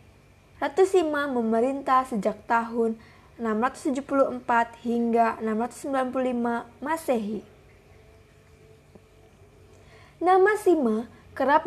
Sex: female